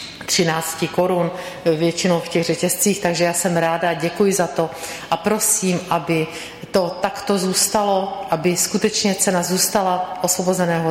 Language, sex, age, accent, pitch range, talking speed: Czech, female, 50-69, native, 165-205 Hz, 130 wpm